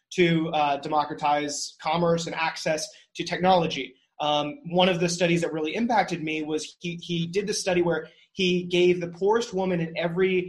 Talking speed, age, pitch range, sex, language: 175 wpm, 30-49, 160-185 Hz, male, English